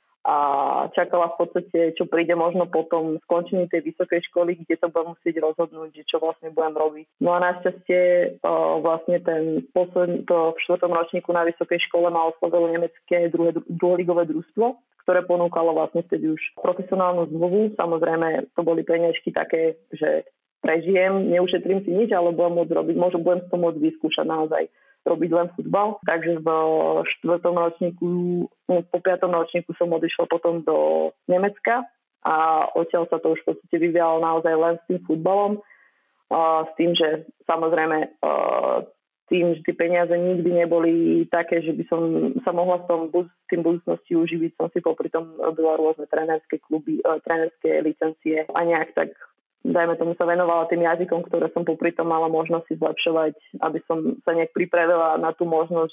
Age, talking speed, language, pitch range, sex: 20-39, 160 wpm, Slovak, 160-175 Hz, female